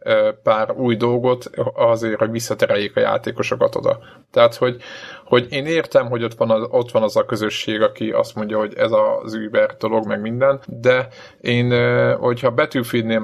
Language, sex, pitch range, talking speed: Hungarian, male, 115-140 Hz, 160 wpm